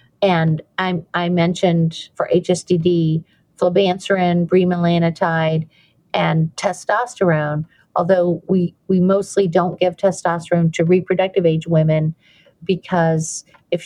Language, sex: English, female